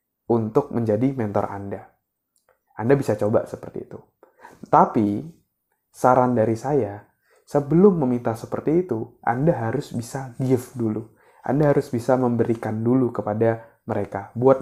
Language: Indonesian